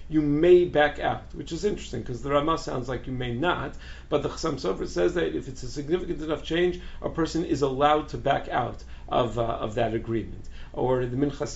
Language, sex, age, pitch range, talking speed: English, male, 50-69, 120-150 Hz, 220 wpm